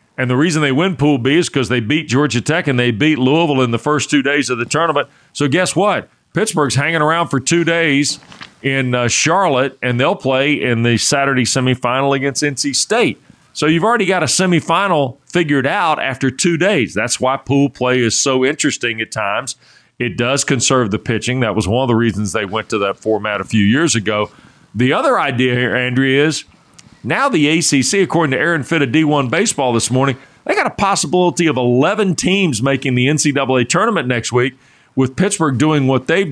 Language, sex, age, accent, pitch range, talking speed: English, male, 40-59, American, 125-160 Hz, 205 wpm